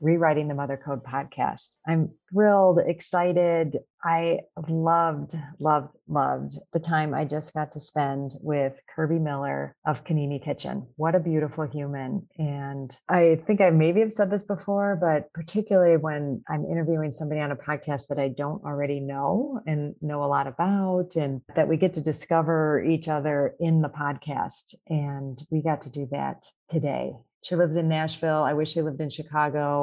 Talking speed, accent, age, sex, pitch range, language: 170 wpm, American, 40-59, female, 145-165 Hz, English